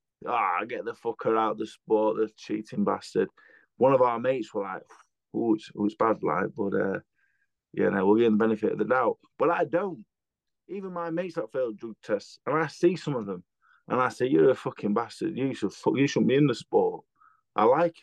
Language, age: English, 20-39